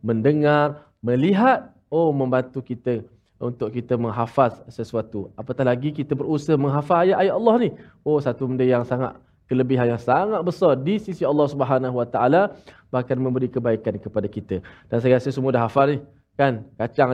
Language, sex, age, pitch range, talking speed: Malayalam, male, 20-39, 130-170 Hz, 160 wpm